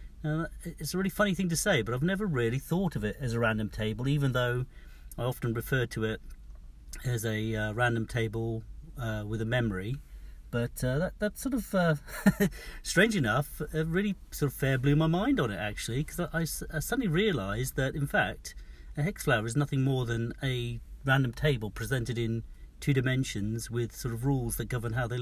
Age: 40-59